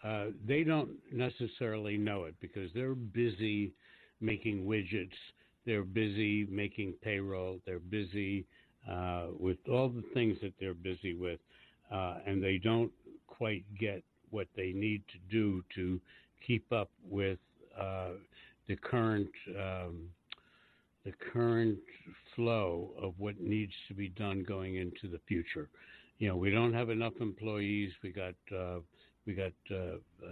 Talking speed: 140 wpm